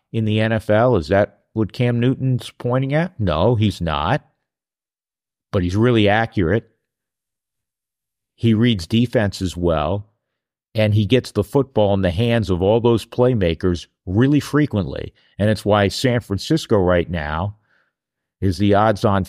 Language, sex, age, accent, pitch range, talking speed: English, male, 50-69, American, 90-115 Hz, 145 wpm